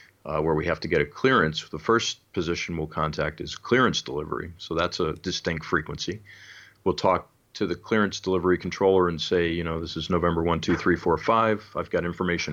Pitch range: 80-95 Hz